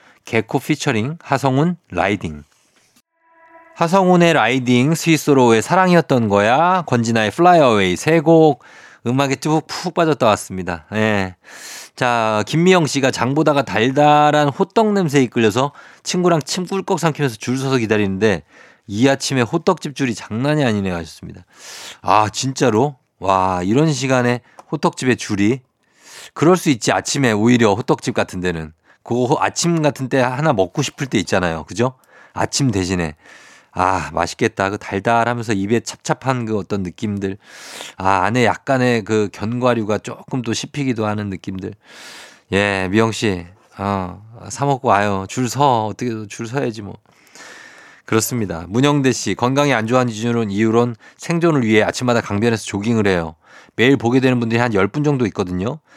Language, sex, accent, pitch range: Korean, male, native, 105-145 Hz